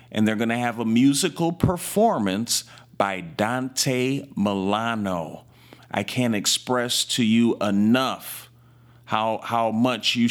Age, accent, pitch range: 40-59, American, 100-125 Hz